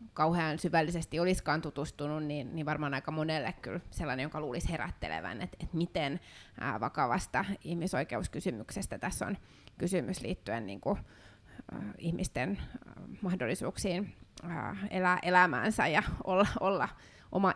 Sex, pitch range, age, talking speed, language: female, 150-185 Hz, 20-39, 115 wpm, Finnish